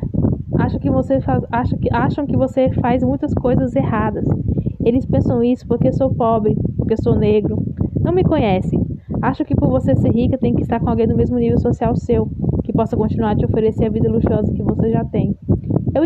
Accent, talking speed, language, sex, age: Brazilian, 200 wpm, Portuguese, female, 10-29